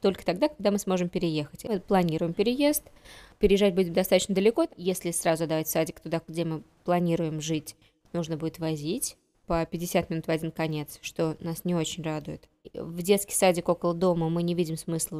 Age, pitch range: 20-39, 165-200 Hz